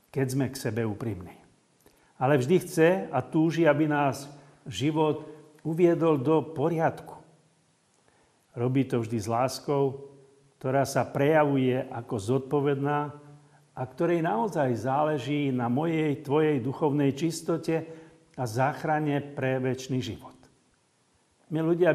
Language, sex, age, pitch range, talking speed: Slovak, male, 50-69, 130-150 Hz, 115 wpm